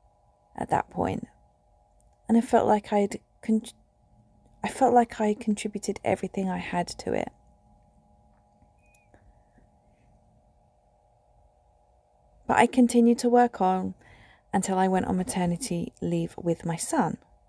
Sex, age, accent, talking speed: female, 30-49, British, 115 wpm